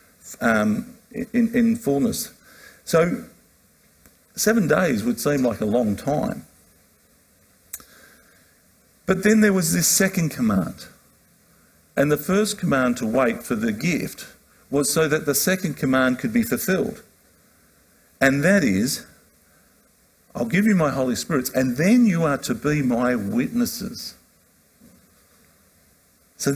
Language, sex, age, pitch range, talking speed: English, male, 50-69, 145-225 Hz, 125 wpm